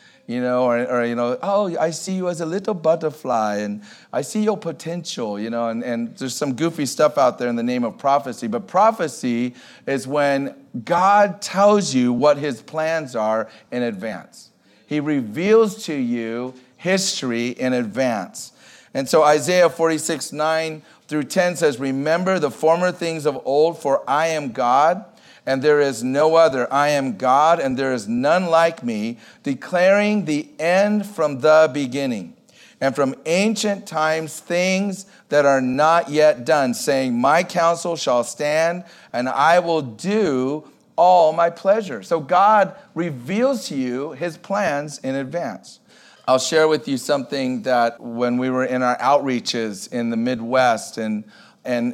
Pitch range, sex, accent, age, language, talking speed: 130-170 Hz, male, American, 40-59, English, 160 wpm